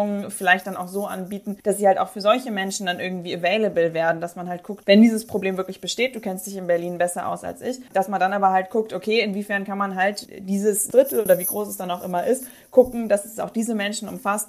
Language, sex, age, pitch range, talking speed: German, female, 20-39, 185-215 Hz, 255 wpm